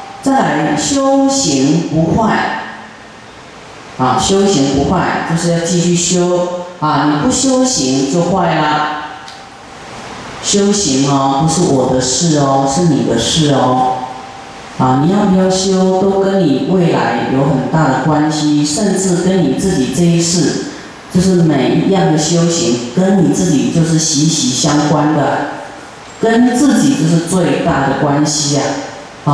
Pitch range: 145-185 Hz